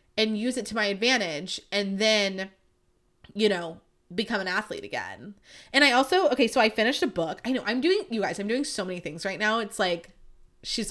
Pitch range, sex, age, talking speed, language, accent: 185-235 Hz, female, 20-39, 215 wpm, English, American